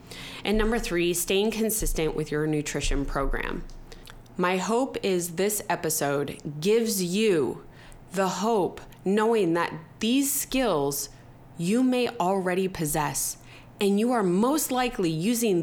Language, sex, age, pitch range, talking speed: English, female, 20-39, 160-220 Hz, 125 wpm